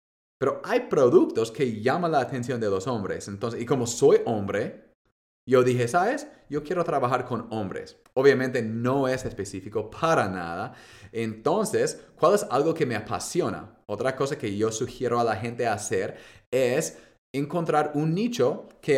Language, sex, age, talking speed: Spanish, male, 30-49, 160 wpm